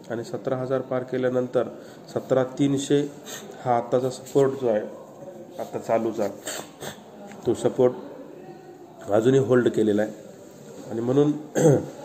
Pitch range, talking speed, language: 115-130 Hz, 115 wpm, Marathi